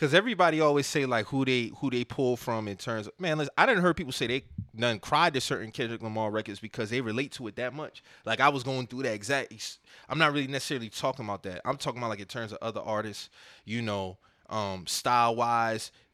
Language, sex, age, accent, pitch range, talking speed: English, male, 20-39, American, 115-150 Hz, 235 wpm